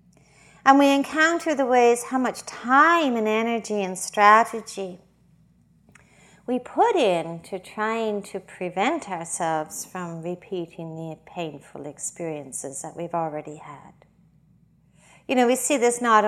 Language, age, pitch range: English, 50-69, 190-255 Hz